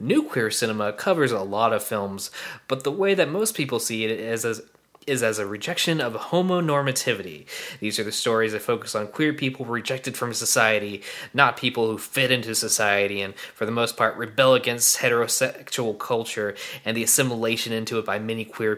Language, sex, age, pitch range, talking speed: English, male, 20-39, 110-135 Hz, 190 wpm